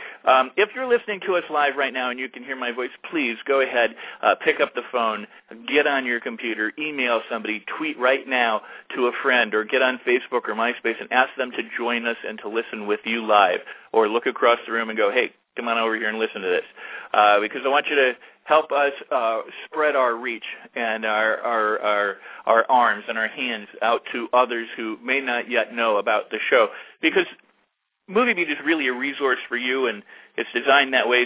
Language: English